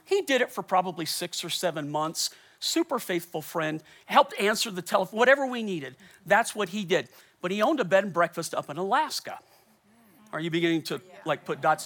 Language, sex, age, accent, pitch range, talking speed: English, male, 40-59, American, 185-265 Hz, 200 wpm